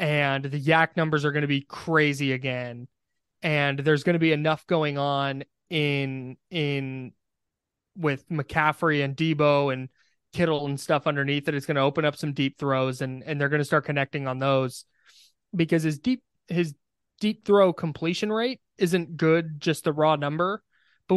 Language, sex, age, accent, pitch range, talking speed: English, male, 20-39, American, 135-165 Hz, 175 wpm